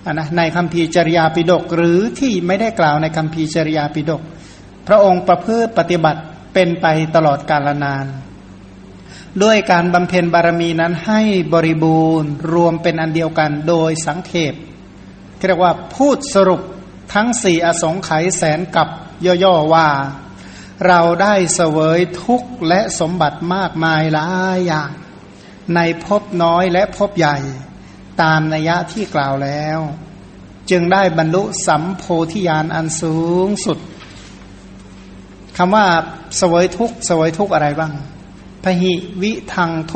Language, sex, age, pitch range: Thai, male, 60-79, 155-180 Hz